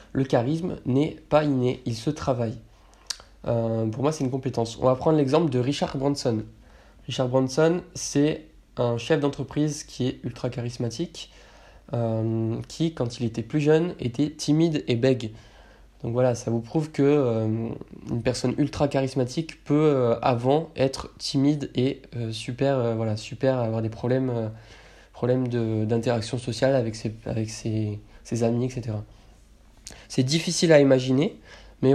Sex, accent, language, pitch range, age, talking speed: male, French, French, 120-145 Hz, 20-39, 160 wpm